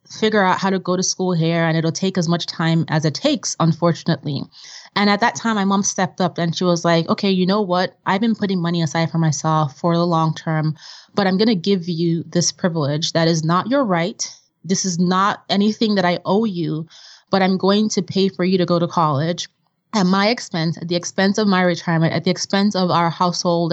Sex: female